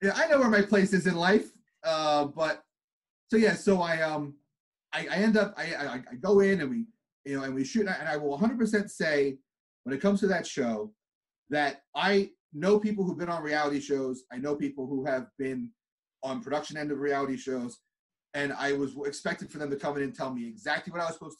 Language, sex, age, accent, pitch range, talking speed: English, male, 30-49, American, 140-200 Hz, 225 wpm